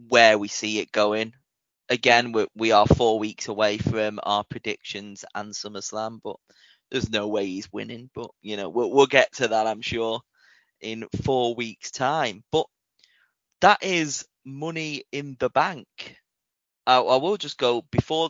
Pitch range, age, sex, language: 110-135 Hz, 20-39, male, English